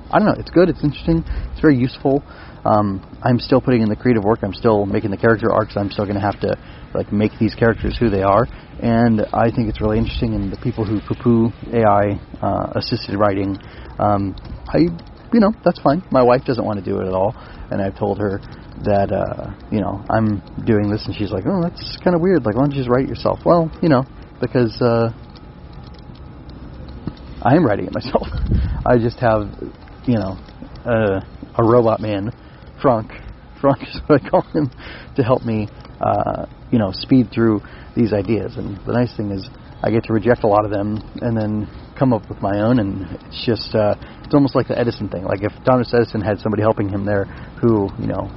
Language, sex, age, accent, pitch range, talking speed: English, male, 30-49, American, 100-125 Hz, 210 wpm